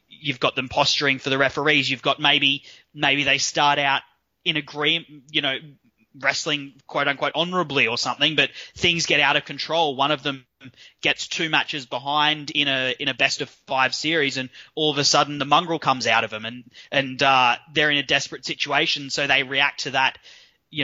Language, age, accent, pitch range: English, 20-39, Australian, 130-150 Hz